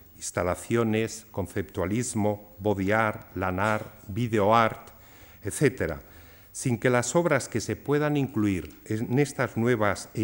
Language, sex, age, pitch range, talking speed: Spanish, male, 50-69, 95-125 Hz, 115 wpm